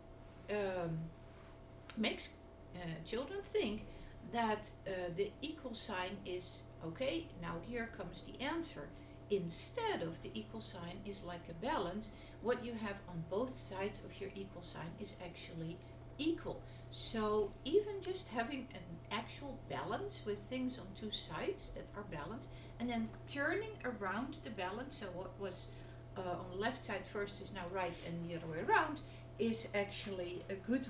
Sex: female